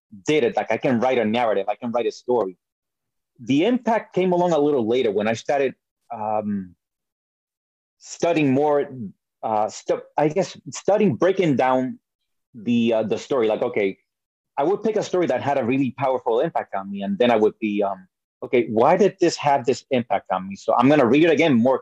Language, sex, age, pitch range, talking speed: English, male, 30-49, 110-180 Hz, 205 wpm